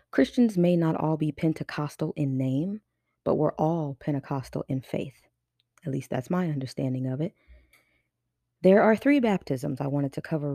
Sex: female